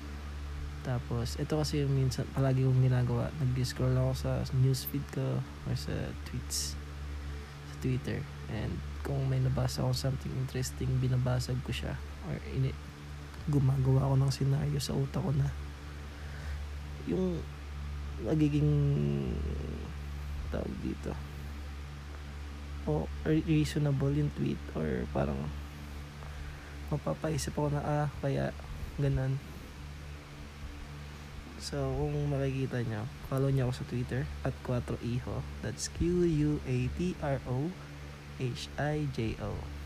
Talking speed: 100 wpm